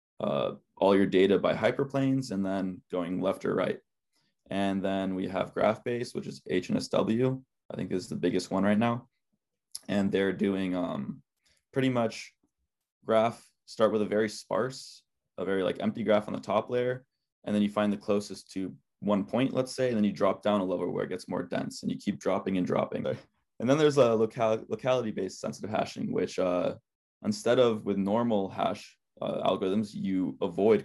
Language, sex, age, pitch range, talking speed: English, male, 20-39, 95-120 Hz, 190 wpm